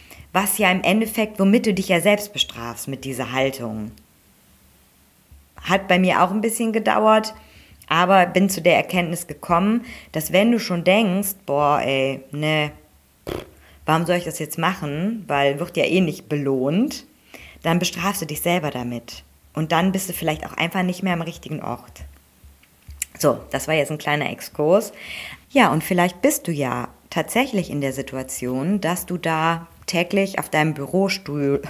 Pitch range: 130-180 Hz